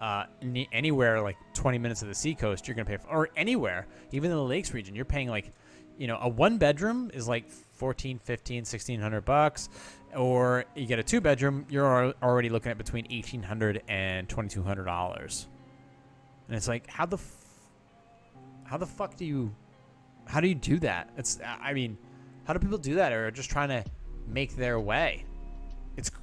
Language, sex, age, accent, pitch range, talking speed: English, male, 20-39, American, 100-135 Hz, 175 wpm